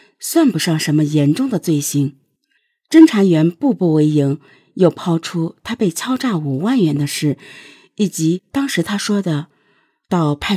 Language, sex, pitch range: Chinese, female, 150-220 Hz